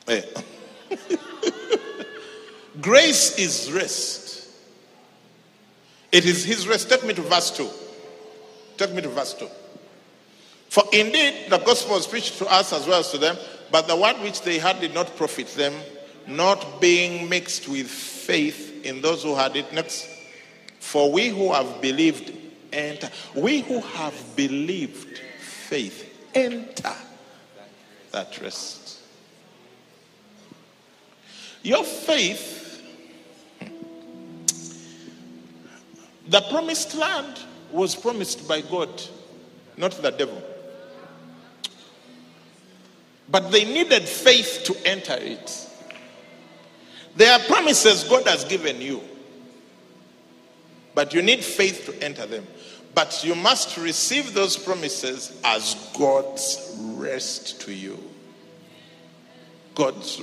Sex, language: male, English